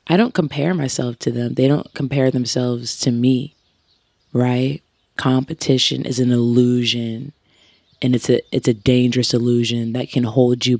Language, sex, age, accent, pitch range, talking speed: English, female, 20-39, American, 120-145 Hz, 155 wpm